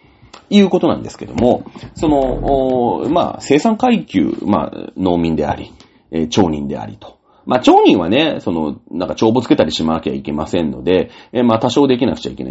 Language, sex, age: Japanese, male, 40-59